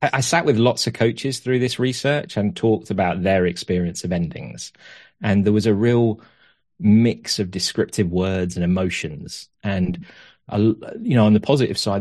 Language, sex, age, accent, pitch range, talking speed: English, male, 30-49, British, 90-110 Hz, 175 wpm